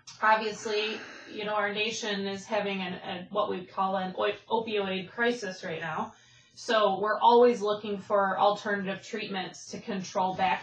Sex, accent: female, American